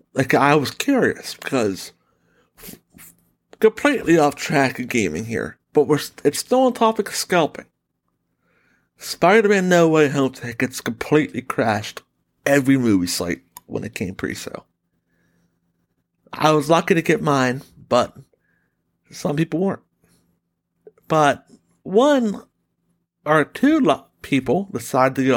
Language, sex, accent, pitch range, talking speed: English, male, American, 130-195 Hz, 130 wpm